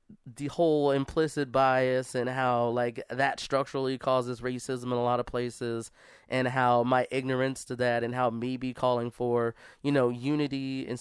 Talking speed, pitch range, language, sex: 175 wpm, 125-145 Hz, English, male